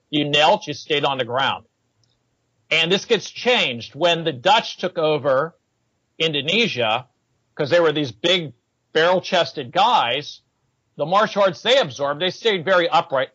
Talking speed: 150 wpm